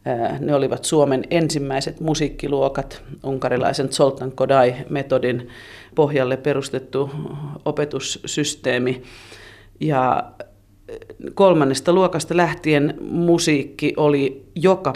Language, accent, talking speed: Finnish, native, 70 wpm